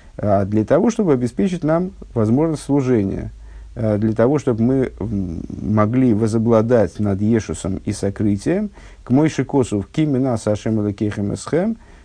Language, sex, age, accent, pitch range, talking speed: Russian, male, 50-69, native, 100-130 Hz, 115 wpm